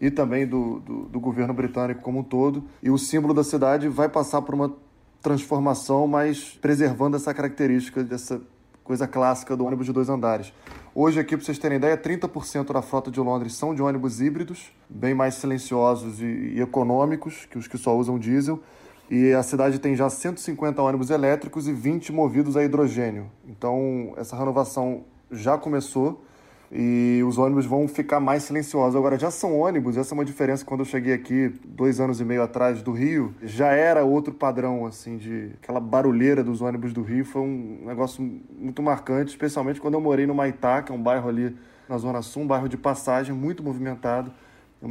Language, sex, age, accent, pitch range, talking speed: Portuguese, male, 20-39, Brazilian, 125-145 Hz, 190 wpm